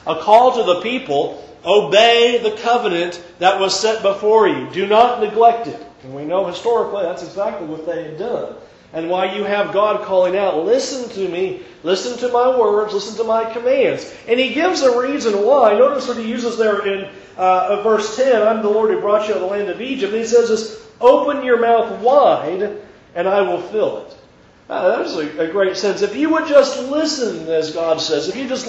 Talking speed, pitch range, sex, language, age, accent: 215 wpm, 200-270 Hz, male, English, 40-59, American